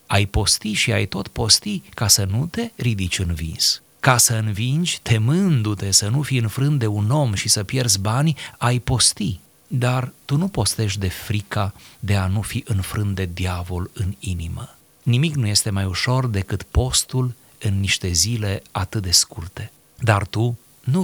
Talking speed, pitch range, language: 175 wpm, 95-130 Hz, Romanian